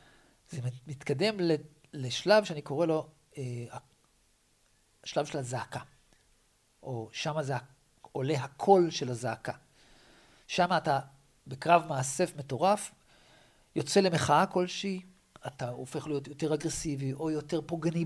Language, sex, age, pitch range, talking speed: Hebrew, male, 40-59, 135-180 Hz, 110 wpm